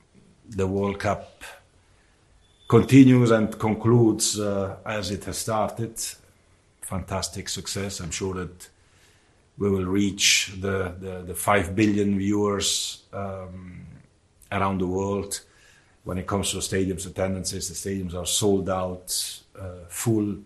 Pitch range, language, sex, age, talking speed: 90-105 Hz, English, male, 50-69, 125 wpm